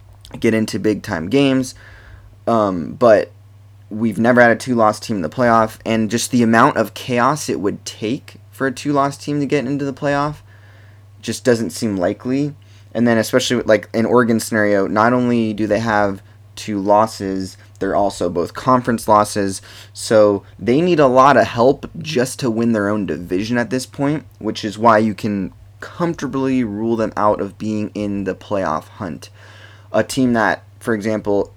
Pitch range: 100-125 Hz